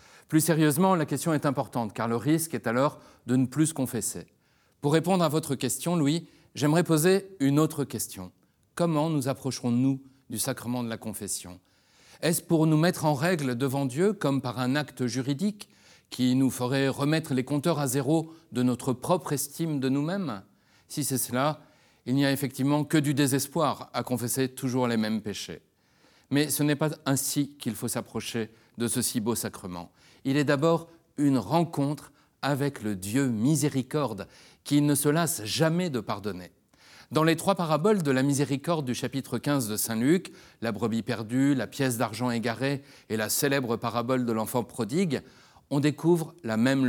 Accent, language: French, French